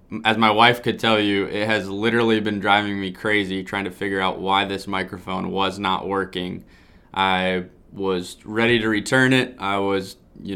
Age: 20-39